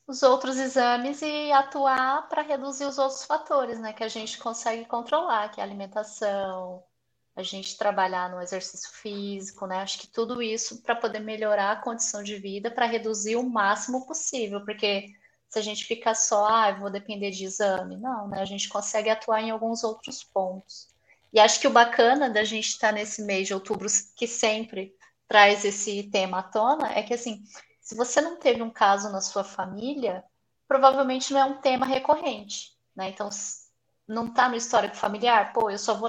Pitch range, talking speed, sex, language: 205-245 Hz, 185 wpm, female, Portuguese